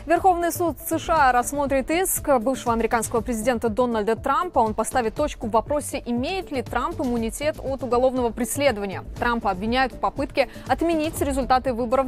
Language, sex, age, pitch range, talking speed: Russian, female, 20-39, 235-300 Hz, 145 wpm